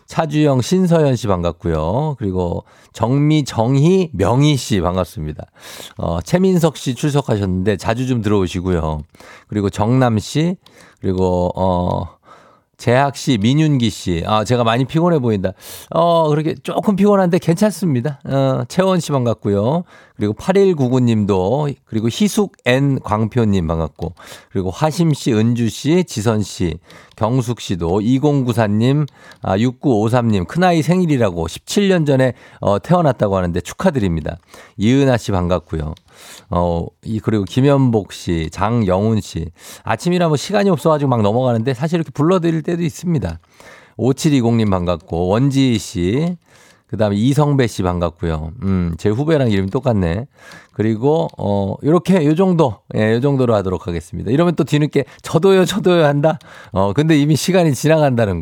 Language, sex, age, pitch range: Korean, male, 50-69, 100-155 Hz